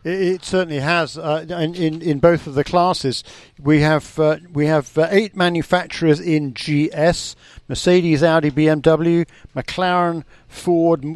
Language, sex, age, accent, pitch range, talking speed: English, male, 50-69, British, 145-180 Hz, 135 wpm